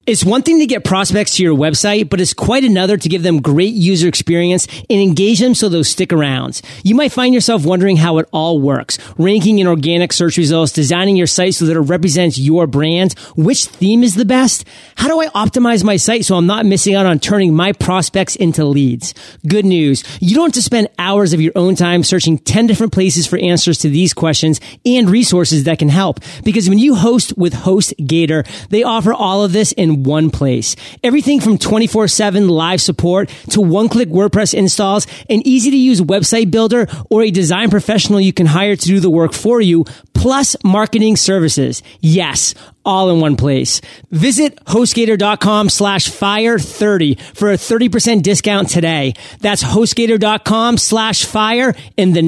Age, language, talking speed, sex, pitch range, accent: 30-49, English, 185 wpm, male, 165-215 Hz, American